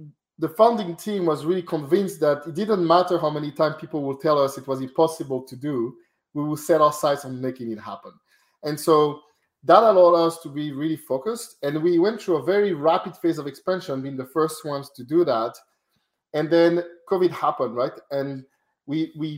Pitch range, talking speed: 145-175 Hz, 200 wpm